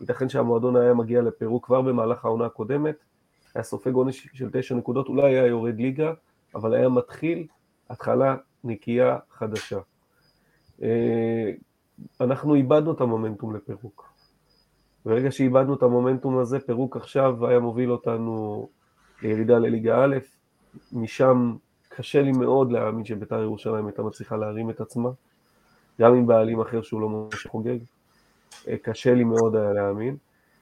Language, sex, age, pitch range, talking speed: Hebrew, male, 30-49, 115-135 Hz, 135 wpm